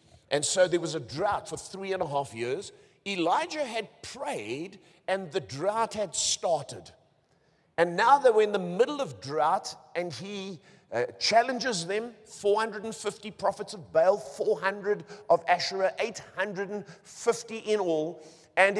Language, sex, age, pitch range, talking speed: English, male, 50-69, 170-255 Hz, 145 wpm